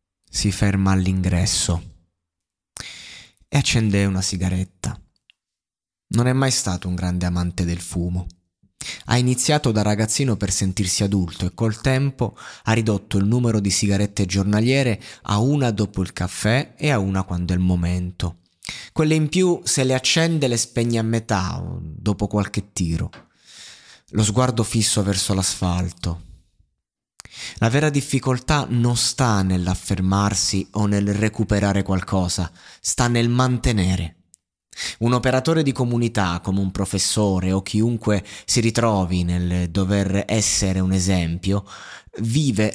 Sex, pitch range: male, 95-120 Hz